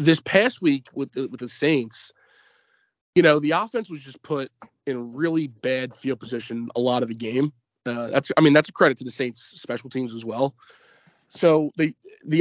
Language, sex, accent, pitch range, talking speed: English, male, American, 125-155 Hz, 205 wpm